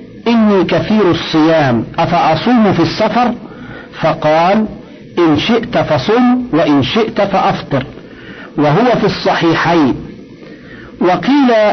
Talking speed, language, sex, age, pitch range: 85 wpm, Arabic, male, 50-69, 155-185 Hz